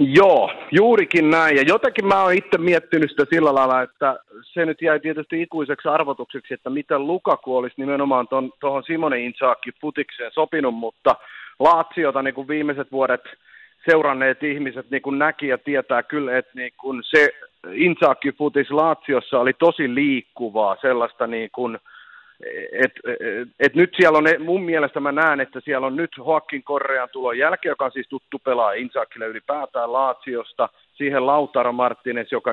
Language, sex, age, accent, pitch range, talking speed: Finnish, male, 40-59, native, 130-165 Hz, 150 wpm